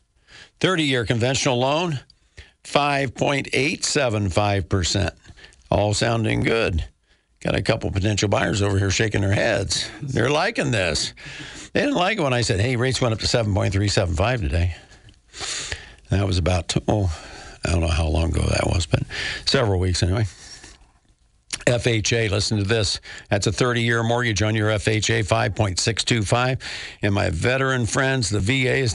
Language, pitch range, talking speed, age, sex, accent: English, 95-120 Hz, 145 wpm, 50-69, male, American